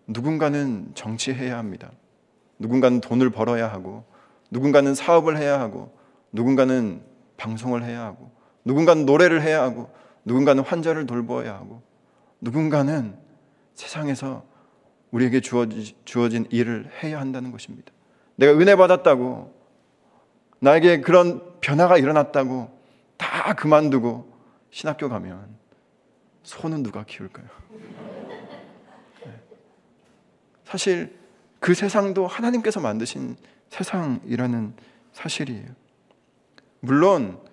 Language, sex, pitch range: Korean, male, 125-190 Hz